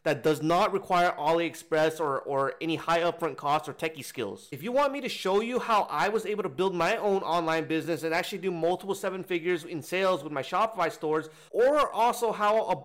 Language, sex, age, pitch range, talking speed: English, male, 30-49, 150-190 Hz, 220 wpm